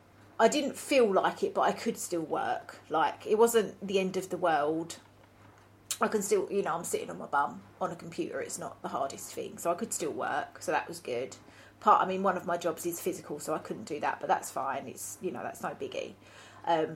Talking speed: 245 wpm